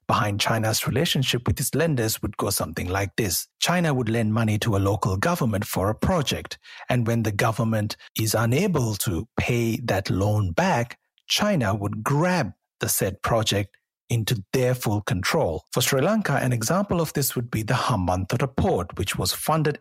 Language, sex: English, male